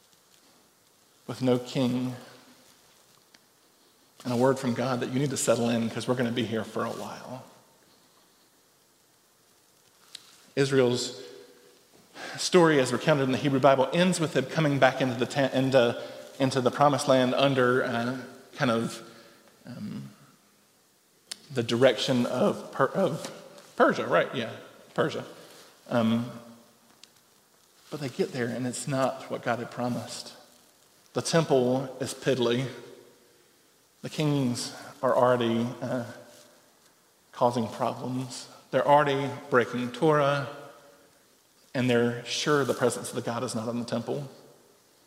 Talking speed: 130 wpm